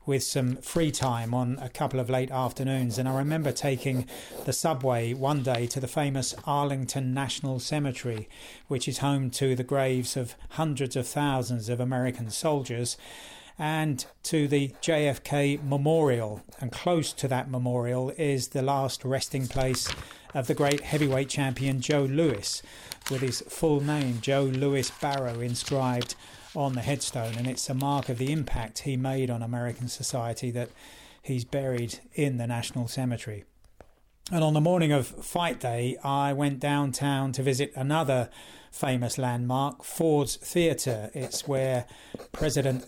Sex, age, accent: male, 40-59, British